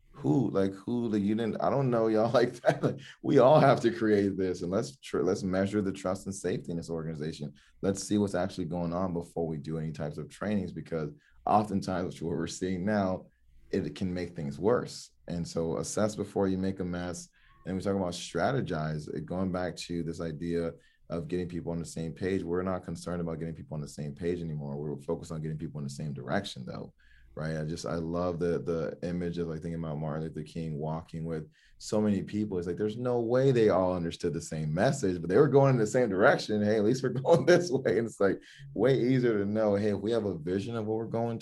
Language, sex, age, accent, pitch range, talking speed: English, male, 30-49, American, 80-100 Hz, 240 wpm